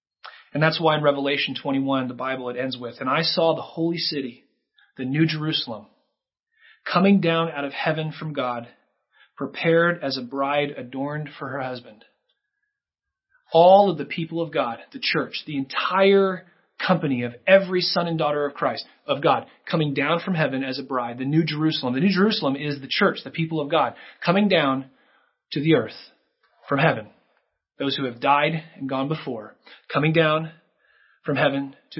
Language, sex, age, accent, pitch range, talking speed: English, male, 30-49, American, 135-175 Hz, 175 wpm